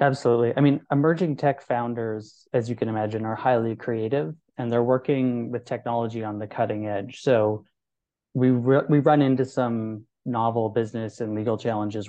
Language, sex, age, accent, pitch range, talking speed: English, male, 20-39, American, 110-130 Hz, 165 wpm